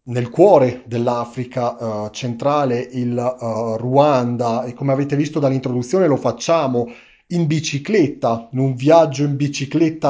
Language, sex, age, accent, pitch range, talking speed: Italian, male, 30-49, native, 120-150 Hz, 120 wpm